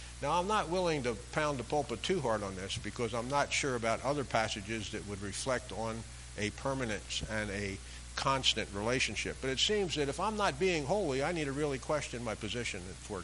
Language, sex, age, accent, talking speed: English, male, 50-69, American, 210 wpm